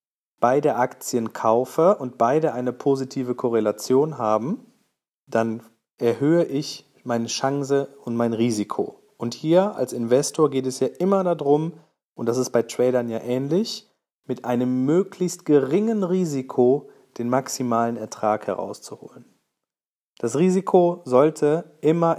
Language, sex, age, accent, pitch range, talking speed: German, male, 40-59, German, 120-155 Hz, 125 wpm